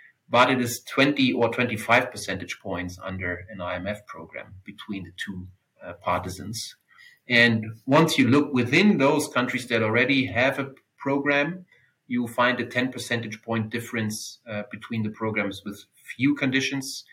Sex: male